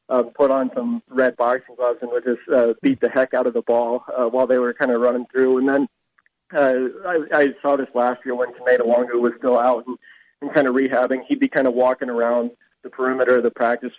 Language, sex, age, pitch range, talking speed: English, male, 20-39, 125-135 Hz, 245 wpm